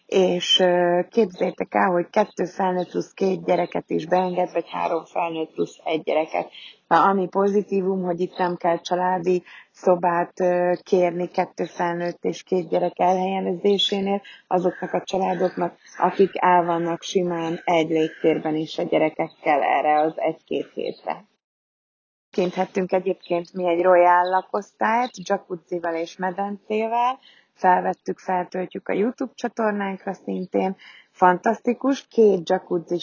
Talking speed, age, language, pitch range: 120 wpm, 30-49, Hungarian, 170-195 Hz